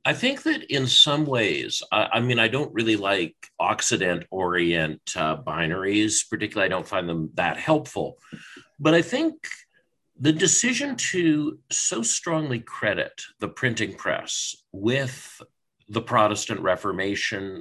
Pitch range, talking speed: 90-150 Hz, 125 wpm